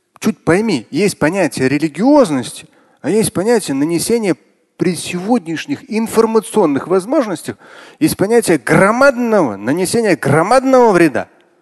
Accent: native